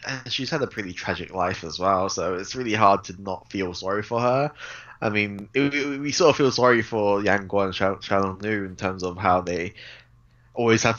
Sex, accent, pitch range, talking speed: male, British, 95-110 Hz, 225 wpm